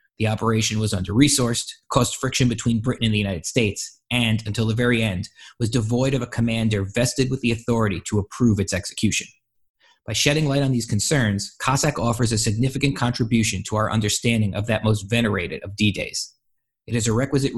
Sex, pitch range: male, 105-125 Hz